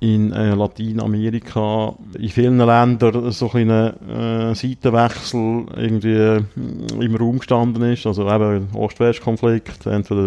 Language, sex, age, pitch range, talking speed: German, male, 30-49, 100-115 Hz, 115 wpm